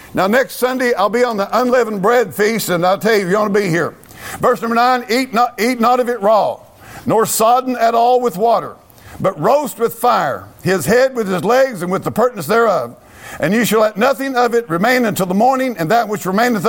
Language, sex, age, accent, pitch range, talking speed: English, male, 60-79, American, 195-245 Hz, 230 wpm